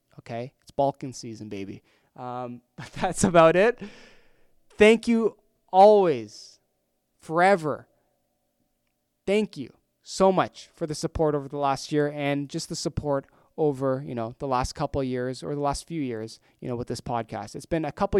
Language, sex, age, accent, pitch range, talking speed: English, male, 20-39, American, 130-175 Hz, 165 wpm